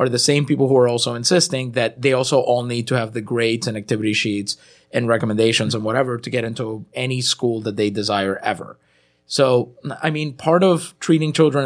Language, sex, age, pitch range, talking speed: English, male, 30-49, 115-145 Hz, 205 wpm